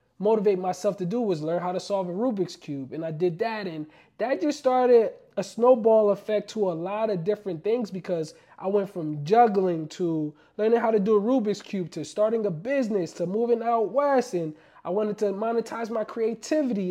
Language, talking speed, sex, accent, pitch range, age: English, 200 wpm, male, American, 170-220 Hz, 20-39